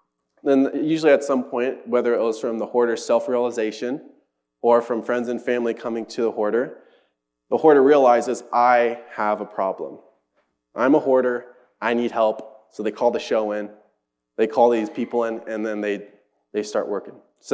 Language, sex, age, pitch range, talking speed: English, male, 20-39, 105-120 Hz, 180 wpm